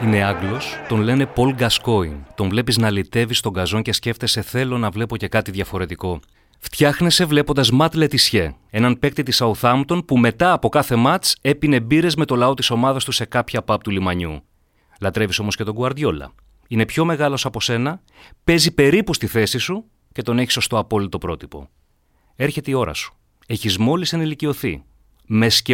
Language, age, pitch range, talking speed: Greek, 30-49, 95-135 Hz, 175 wpm